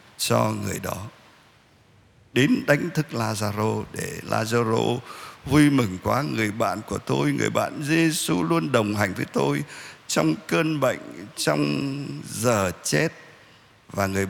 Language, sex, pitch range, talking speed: Vietnamese, male, 105-150 Hz, 135 wpm